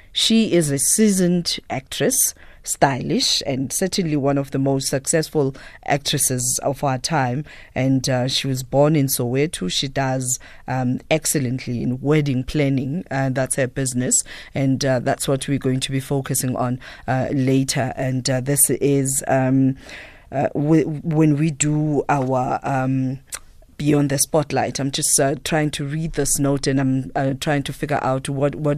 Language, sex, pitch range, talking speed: English, female, 130-145 Hz, 165 wpm